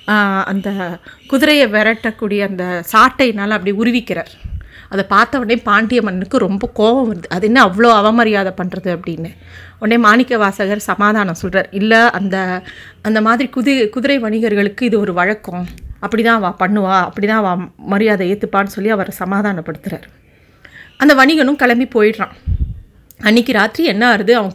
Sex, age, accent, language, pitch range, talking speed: female, 30-49, native, Tamil, 195-240 Hz, 130 wpm